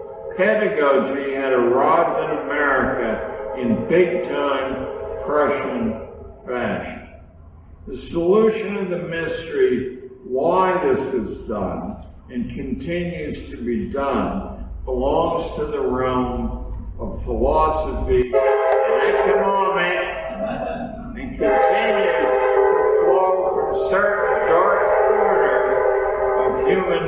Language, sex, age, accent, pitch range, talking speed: English, male, 60-79, American, 130-195 Hz, 95 wpm